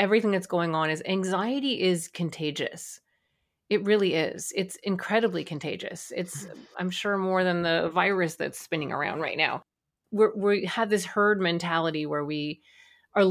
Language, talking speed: English, 155 wpm